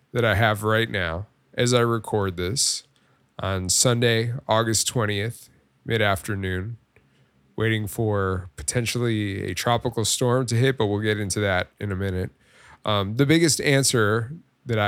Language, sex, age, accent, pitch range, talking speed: English, male, 20-39, American, 100-125 Hz, 140 wpm